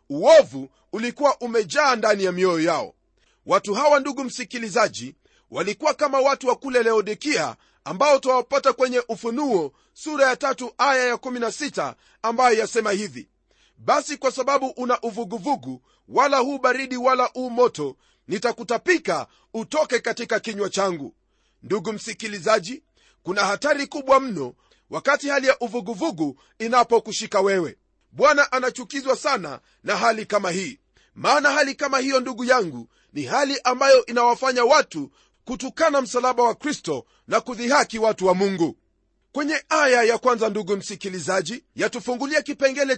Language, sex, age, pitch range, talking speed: Swahili, male, 40-59, 220-275 Hz, 130 wpm